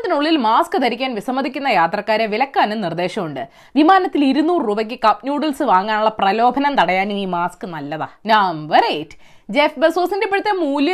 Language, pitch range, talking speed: Malayalam, 210-320 Hz, 90 wpm